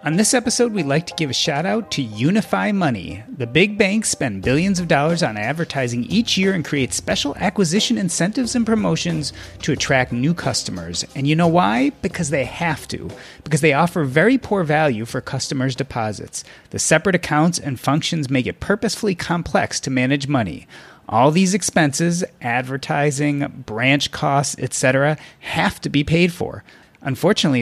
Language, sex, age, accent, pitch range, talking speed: English, male, 30-49, American, 130-175 Hz, 165 wpm